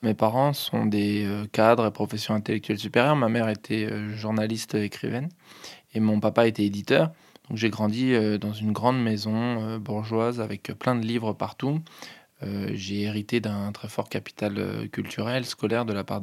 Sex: male